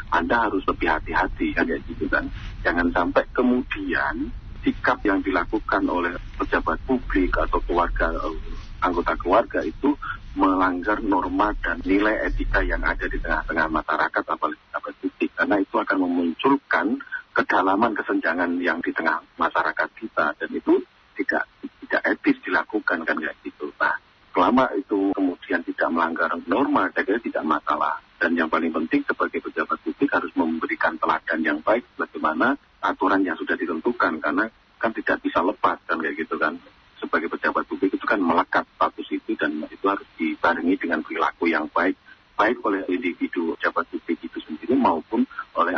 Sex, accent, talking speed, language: male, native, 150 wpm, Indonesian